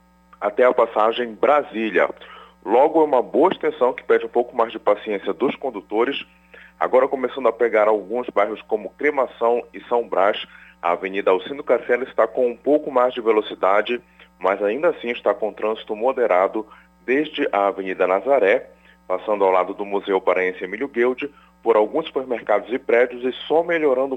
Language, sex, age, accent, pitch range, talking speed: Portuguese, male, 30-49, Brazilian, 100-145 Hz, 165 wpm